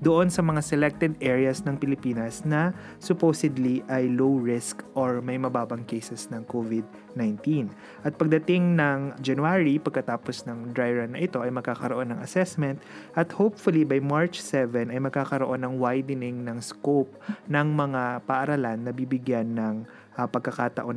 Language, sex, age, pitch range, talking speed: English, male, 20-39, 125-150 Hz, 145 wpm